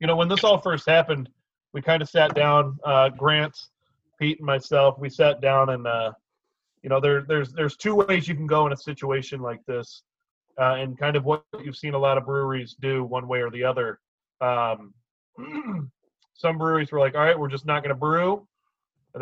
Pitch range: 135-155 Hz